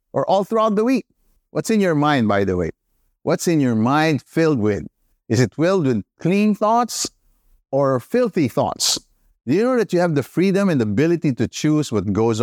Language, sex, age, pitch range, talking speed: English, male, 50-69, 120-180 Hz, 200 wpm